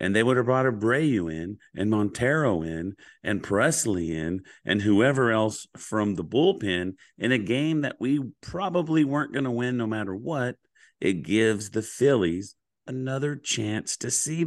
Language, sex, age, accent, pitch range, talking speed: English, male, 40-59, American, 105-140 Hz, 170 wpm